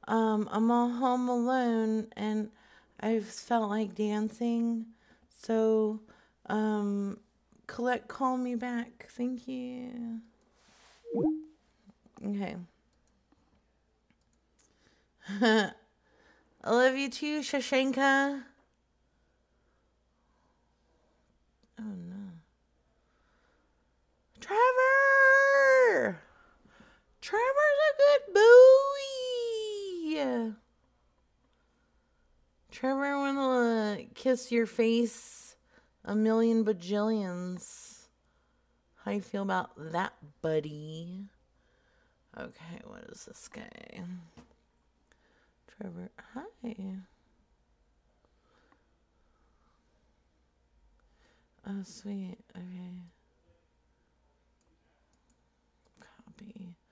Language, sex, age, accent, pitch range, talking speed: English, female, 30-49, American, 175-250 Hz, 60 wpm